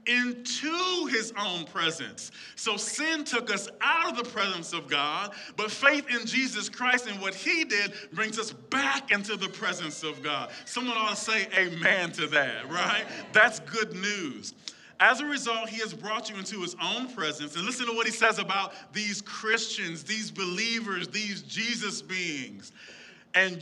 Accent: American